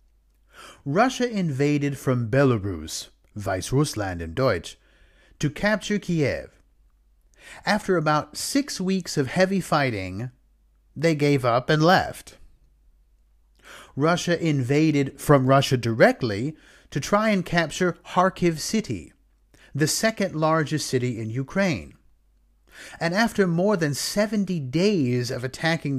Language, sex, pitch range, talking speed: English, male, 125-180 Hz, 110 wpm